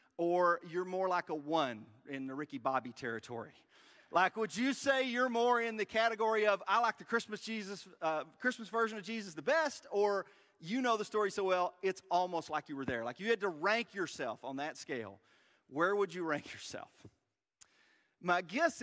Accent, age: American, 40-59